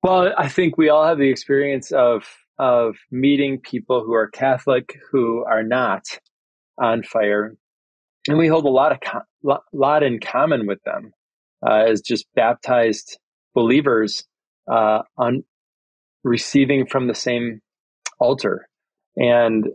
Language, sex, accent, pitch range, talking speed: English, male, American, 115-135 Hz, 135 wpm